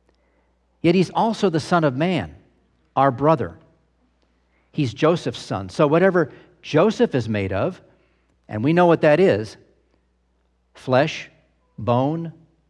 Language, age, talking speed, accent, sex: English, 50-69, 125 wpm, American, male